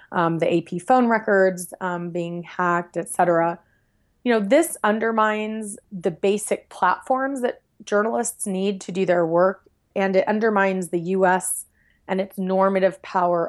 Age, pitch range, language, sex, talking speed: 30-49, 175-210 Hz, English, female, 140 wpm